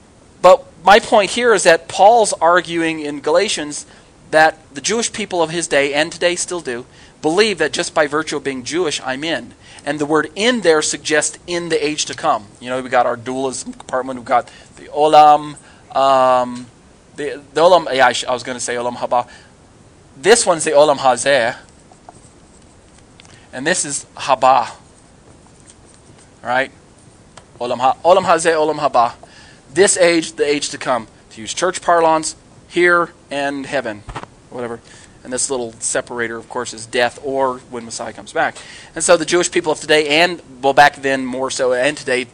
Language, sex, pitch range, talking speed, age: English, male, 125-165 Hz, 170 wpm, 20-39